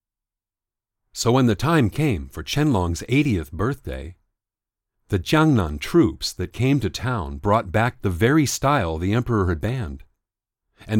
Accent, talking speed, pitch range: American, 140 wpm, 95-125 Hz